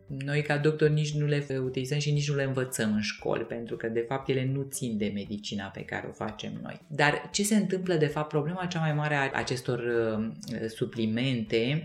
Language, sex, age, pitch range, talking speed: Romanian, female, 30-49, 120-155 Hz, 215 wpm